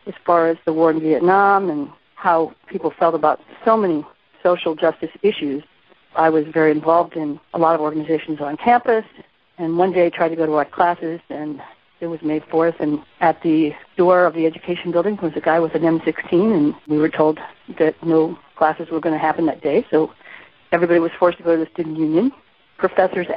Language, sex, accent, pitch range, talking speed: English, female, American, 160-180 Hz, 210 wpm